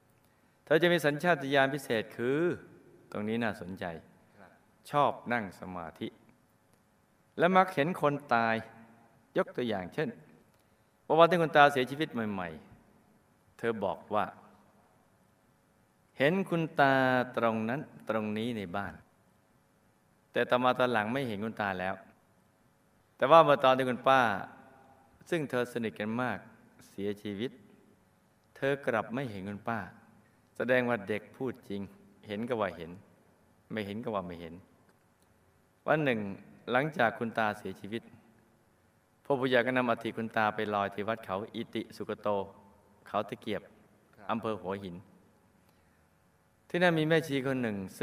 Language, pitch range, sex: Thai, 105-130 Hz, male